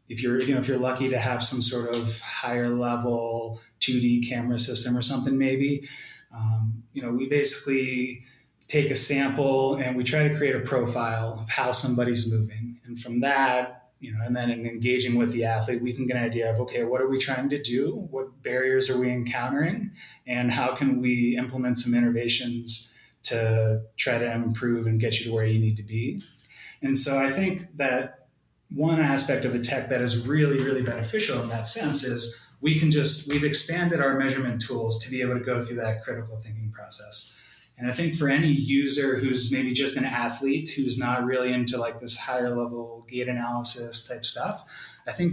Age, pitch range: 20-39, 120-135 Hz